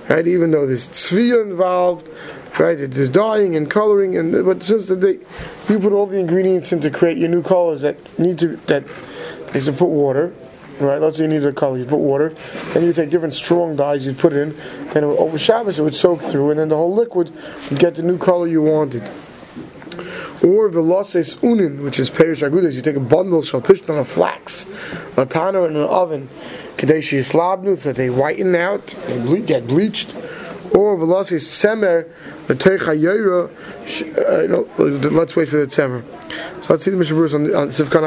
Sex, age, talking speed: male, 30-49, 180 wpm